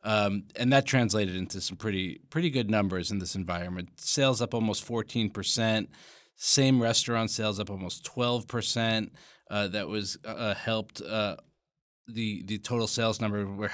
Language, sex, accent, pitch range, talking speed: English, male, American, 100-120 Hz, 155 wpm